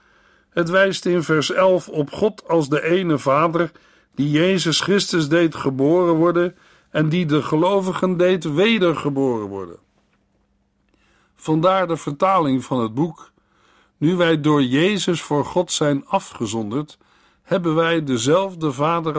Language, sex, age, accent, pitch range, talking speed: Dutch, male, 60-79, Dutch, 135-175 Hz, 130 wpm